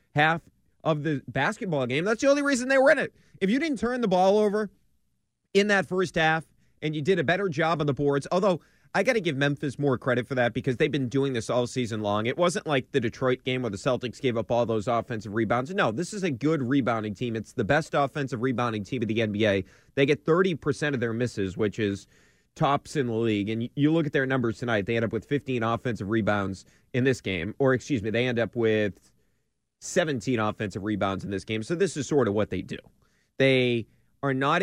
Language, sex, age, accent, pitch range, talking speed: English, male, 30-49, American, 115-155 Hz, 235 wpm